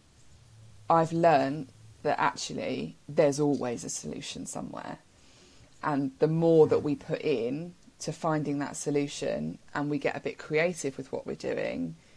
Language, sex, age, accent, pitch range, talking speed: English, female, 20-39, British, 140-160 Hz, 150 wpm